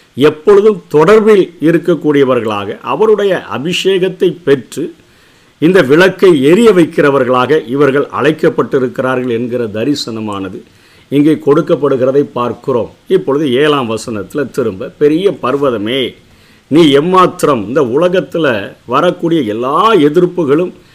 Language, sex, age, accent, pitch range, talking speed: Tamil, male, 50-69, native, 130-180 Hz, 85 wpm